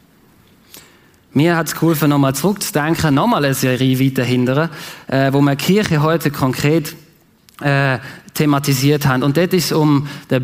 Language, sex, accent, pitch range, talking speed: German, male, German, 135-170 Hz, 150 wpm